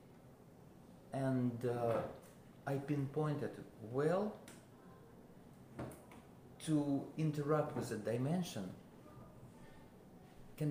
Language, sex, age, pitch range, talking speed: English, male, 50-69, 125-160 Hz, 60 wpm